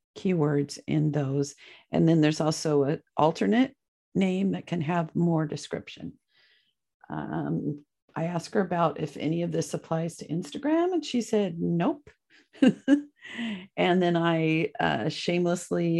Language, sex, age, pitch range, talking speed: English, female, 50-69, 150-205 Hz, 135 wpm